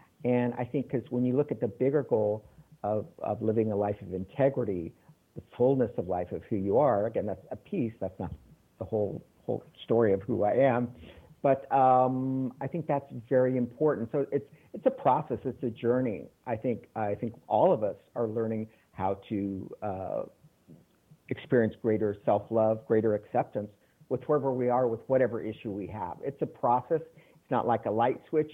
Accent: American